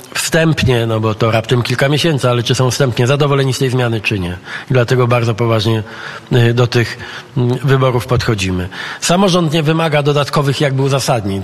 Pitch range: 120-145 Hz